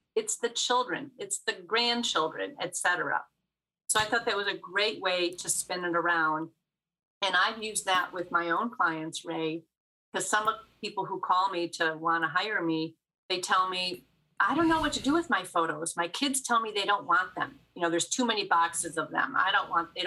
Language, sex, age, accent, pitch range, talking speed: English, female, 40-59, American, 170-215 Hz, 220 wpm